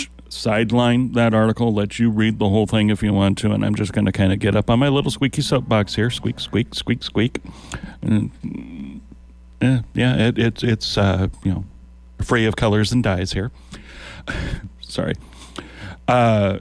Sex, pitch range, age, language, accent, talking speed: male, 95-120 Hz, 40-59, English, American, 175 wpm